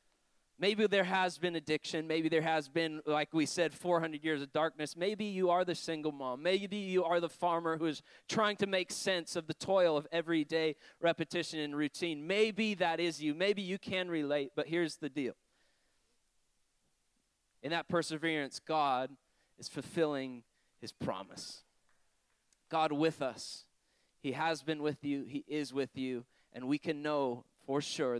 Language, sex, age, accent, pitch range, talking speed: English, male, 20-39, American, 145-175 Hz, 170 wpm